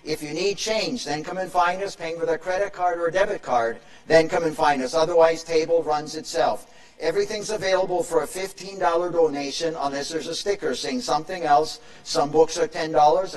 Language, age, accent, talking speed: English, 50-69, American, 200 wpm